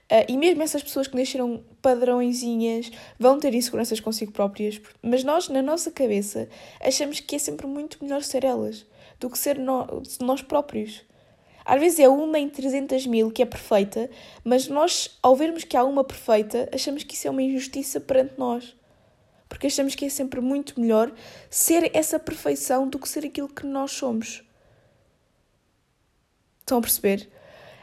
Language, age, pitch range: Portuguese, 20-39, 225-275 Hz